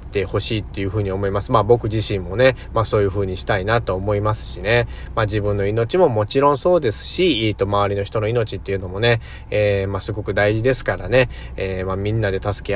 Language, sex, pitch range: Japanese, male, 95-115 Hz